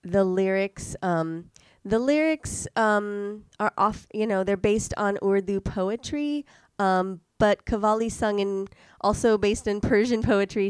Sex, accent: female, American